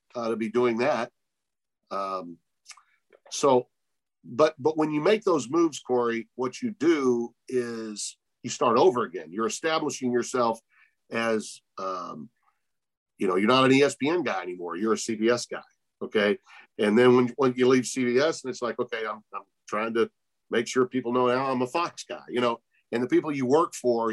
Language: English